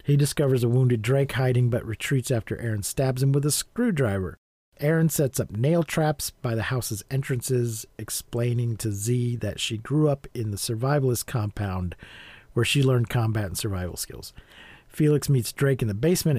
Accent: American